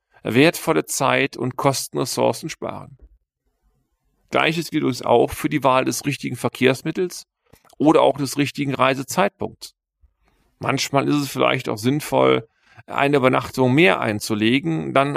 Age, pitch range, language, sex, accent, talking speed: 40-59, 110-145 Hz, German, male, German, 125 wpm